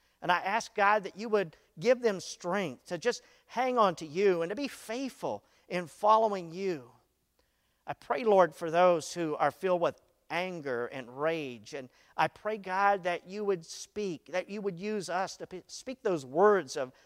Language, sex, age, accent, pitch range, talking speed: English, male, 50-69, American, 140-210 Hz, 185 wpm